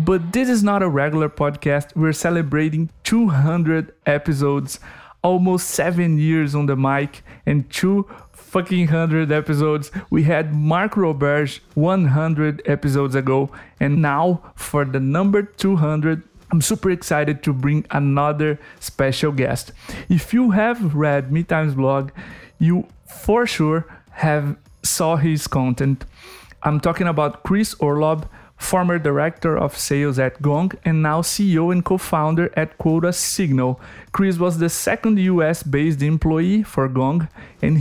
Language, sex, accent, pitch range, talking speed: Portuguese, male, Brazilian, 145-175 Hz, 135 wpm